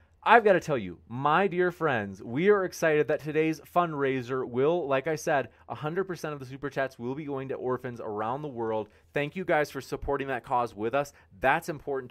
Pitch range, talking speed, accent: 120-170 Hz, 220 wpm, American